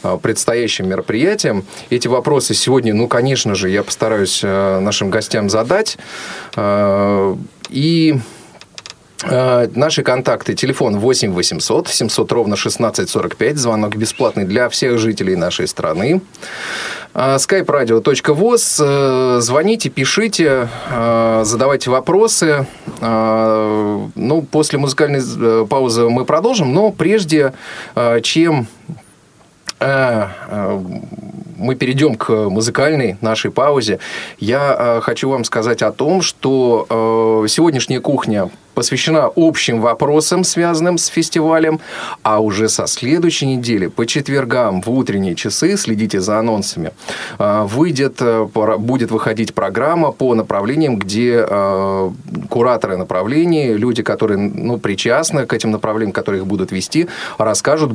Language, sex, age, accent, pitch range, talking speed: Russian, male, 30-49, native, 110-145 Hz, 105 wpm